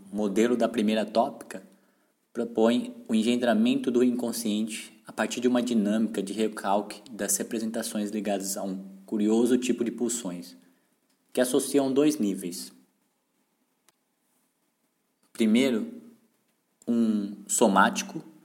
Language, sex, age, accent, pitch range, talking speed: Portuguese, male, 20-39, Brazilian, 105-125 Hz, 105 wpm